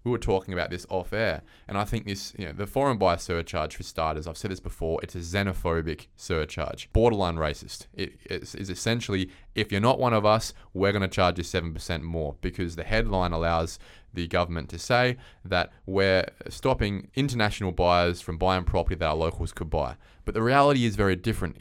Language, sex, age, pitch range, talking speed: English, male, 20-39, 85-110 Hz, 200 wpm